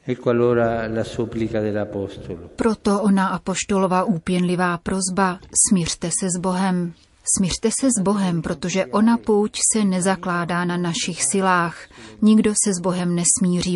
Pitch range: 170-200 Hz